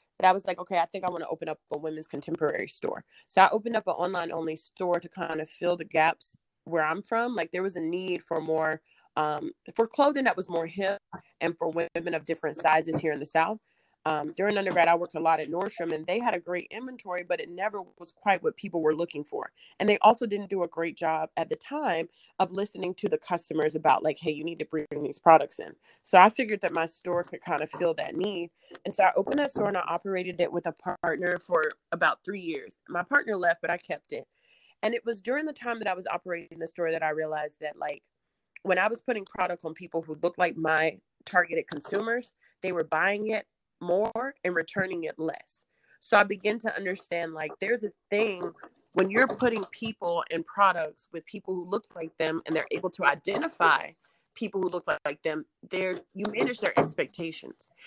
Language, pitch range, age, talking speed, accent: English, 160-210 Hz, 20-39, 225 wpm, American